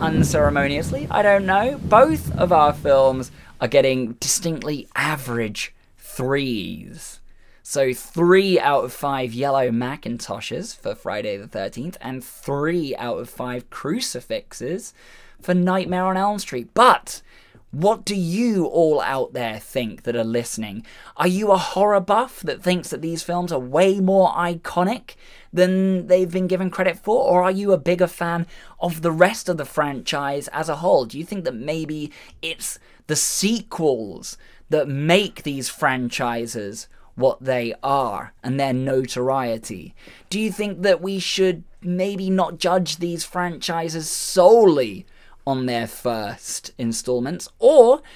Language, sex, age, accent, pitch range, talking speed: English, male, 20-39, British, 135-190 Hz, 145 wpm